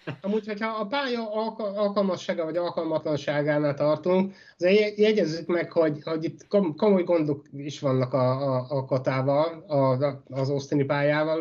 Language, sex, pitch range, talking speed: Hungarian, male, 140-170 Hz, 135 wpm